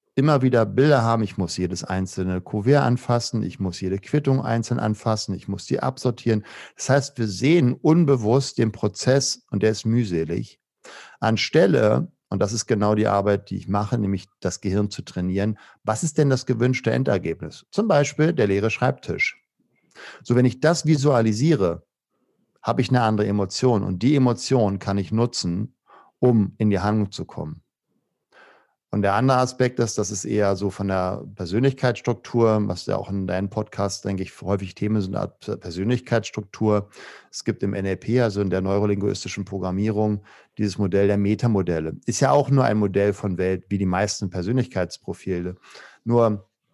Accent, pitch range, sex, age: German, 100-125 Hz, male, 50-69